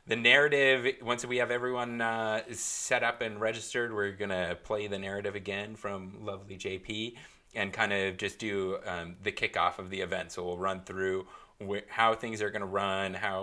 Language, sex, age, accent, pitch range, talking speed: English, male, 30-49, American, 95-110 Hz, 195 wpm